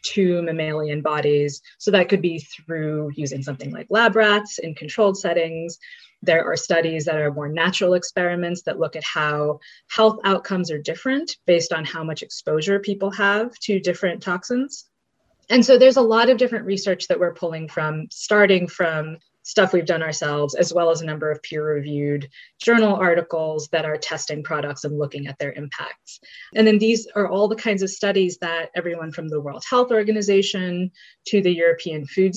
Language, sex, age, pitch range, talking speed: English, female, 20-39, 155-200 Hz, 180 wpm